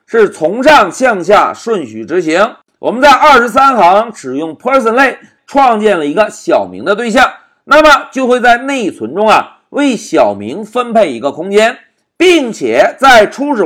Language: Chinese